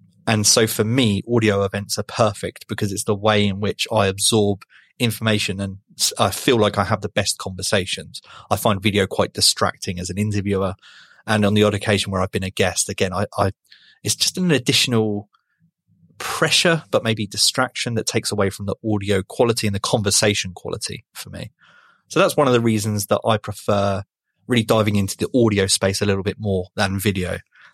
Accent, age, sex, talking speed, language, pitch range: British, 30-49, male, 195 wpm, English, 100-110 Hz